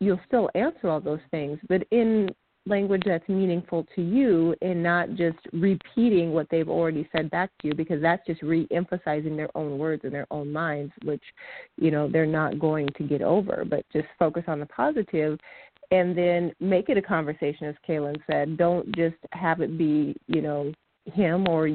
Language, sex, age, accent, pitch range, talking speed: English, female, 40-59, American, 165-220 Hz, 190 wpm